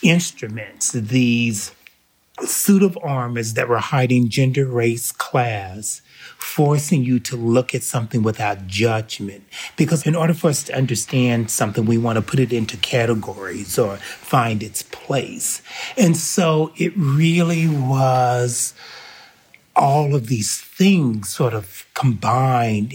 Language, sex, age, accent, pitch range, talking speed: English, male, 30-49, American, 110-140 Hz, 130 wpm